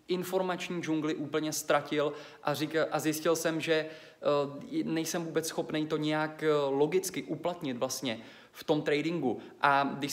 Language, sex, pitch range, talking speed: Czech, male, 150-170 Hz, 150 wpm